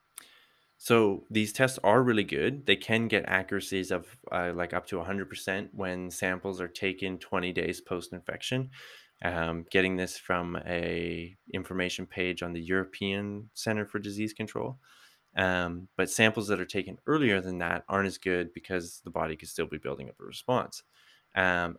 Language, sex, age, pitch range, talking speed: English, male, 20-39, 85-100 Hz, 165 wpm